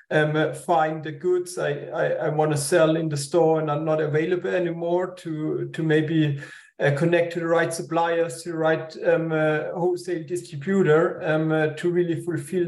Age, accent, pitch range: 40-59, German, 155-180 Hz